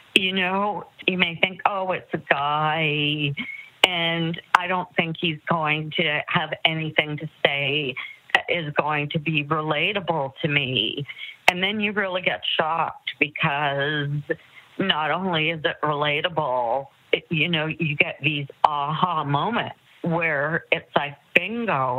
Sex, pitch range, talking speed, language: female, 150-185 Hz, 140 wpm, English